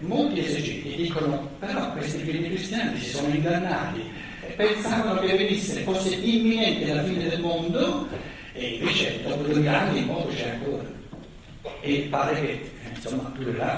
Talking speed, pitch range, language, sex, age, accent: 145 wpm, 145-235 Hz, Italian, male, 60-79, native